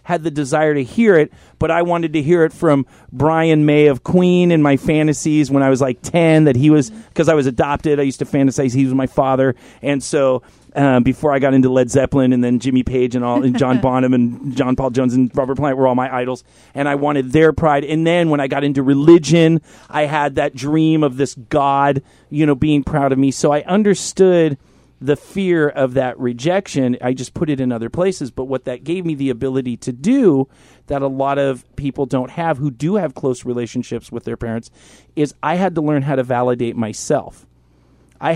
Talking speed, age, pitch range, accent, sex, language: 225 wpm, 40-59, 125-150 Hz, American, male, English